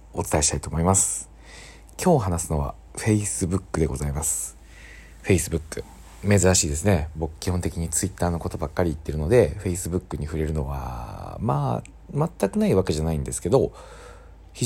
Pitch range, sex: 80-105 Hz, male